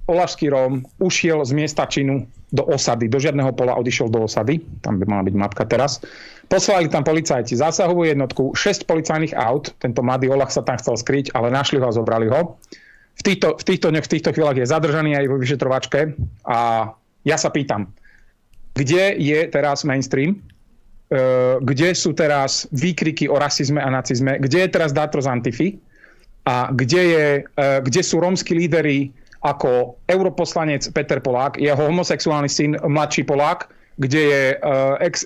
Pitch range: 130-160 Hz